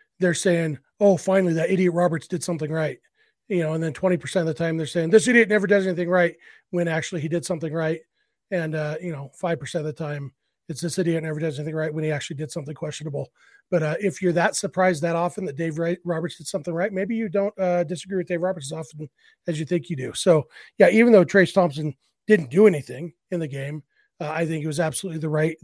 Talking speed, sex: 240 wpm, male